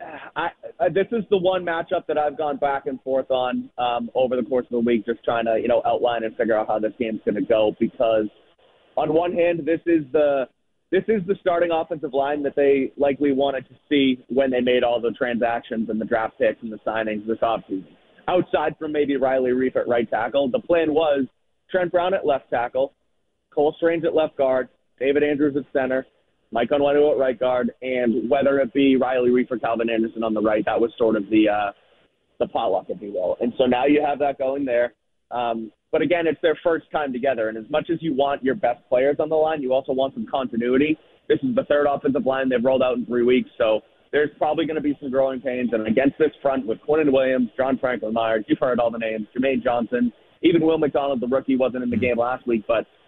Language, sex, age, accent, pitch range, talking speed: English, male, 30-49, American, 120-150 Hz, 230 wpm